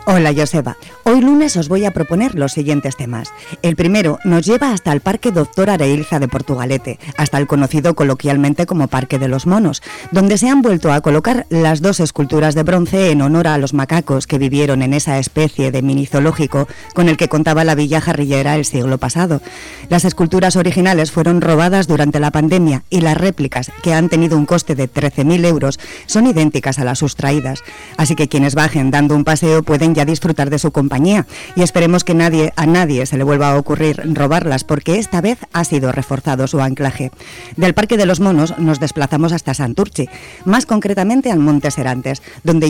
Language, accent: Spanish, Spanish